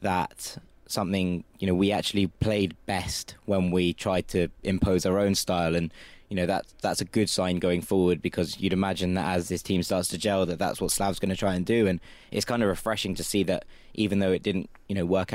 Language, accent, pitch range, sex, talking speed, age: English, British, 90-100 Hz, male, 235 wpm, 20-39